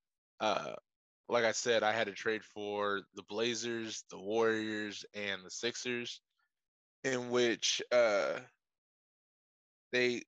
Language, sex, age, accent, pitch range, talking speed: English, male, 20-39, American, 105-125 Hz, 115 wpm